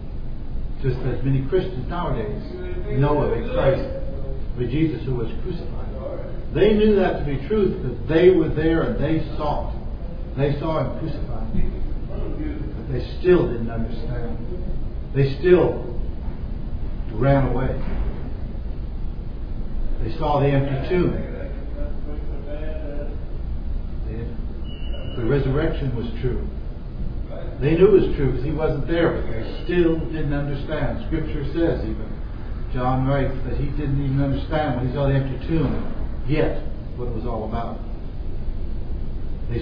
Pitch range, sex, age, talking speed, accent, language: 110-140 Hz, male, 60-79, 130 wpm, American, English